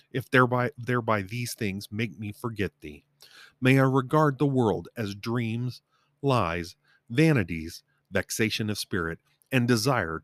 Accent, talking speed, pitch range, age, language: American, 135 wpm, 95-130 Hz, 40-59, English